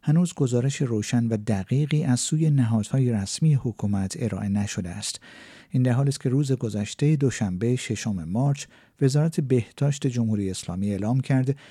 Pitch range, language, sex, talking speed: 105-140 Hz, Persian, male, 150 wpm